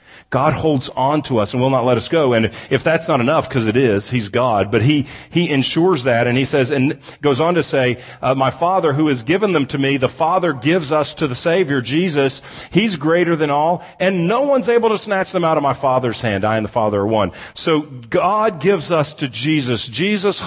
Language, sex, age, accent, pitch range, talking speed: English, male, 40-59, American, 115-160 Hz, 250 wpm